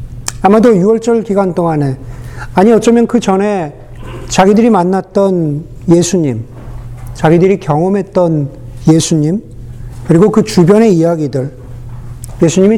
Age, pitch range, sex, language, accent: 50-69, 120-190 Hz, male, Korean, native